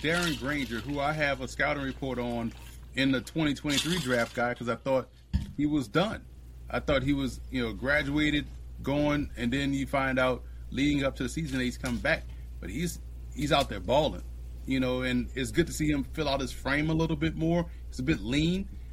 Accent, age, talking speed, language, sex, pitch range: American, 30-49, 215 wpm, English, male, 115-140 Hz